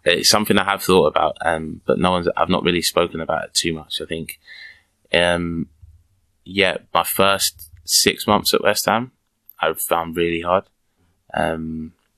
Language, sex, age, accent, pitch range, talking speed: German, male, 20-39, British, 80-85 Hz, 170 wpm